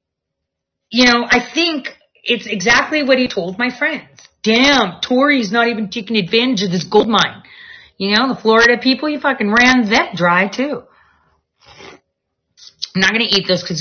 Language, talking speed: English, 170 wpm